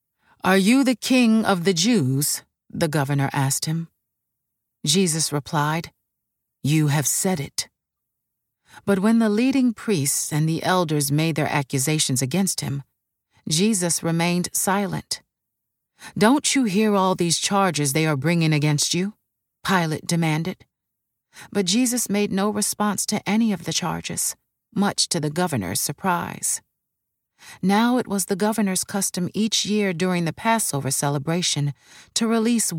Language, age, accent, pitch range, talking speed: English, 40-59, American, 155-210 Hz, 135 wpm